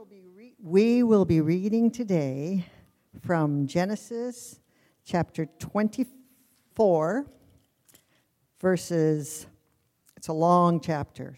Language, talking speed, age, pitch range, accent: English, 75 wpm, 50-69, 160-235 Hz, American